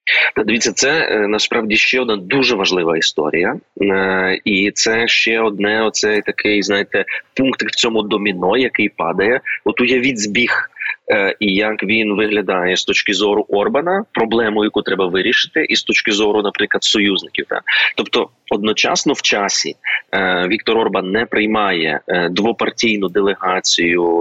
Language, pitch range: Ukrainian, 95-110 Hz